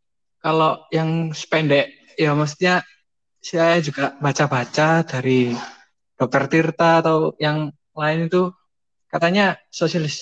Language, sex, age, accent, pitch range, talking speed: Indonesian, male, 20-39, native, 140-165 Hz, 100 wpm